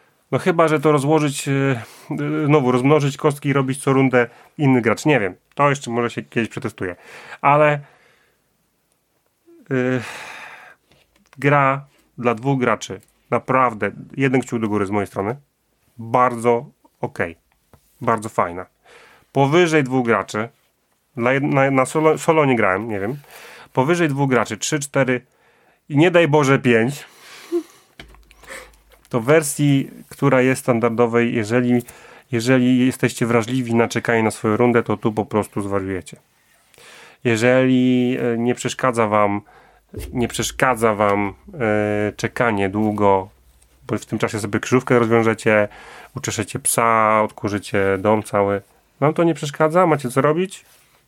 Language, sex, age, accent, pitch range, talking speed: Polish, male, 30-49, native, 110-140 Hz, 125 wpm